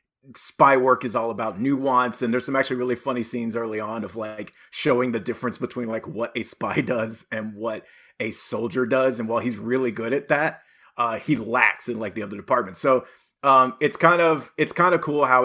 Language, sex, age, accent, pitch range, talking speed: English, male, 30-49, American, 115-140 Hz, 220 wpm